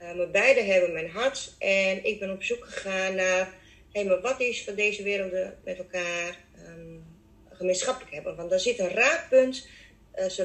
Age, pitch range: 30-49, 185-225 Hz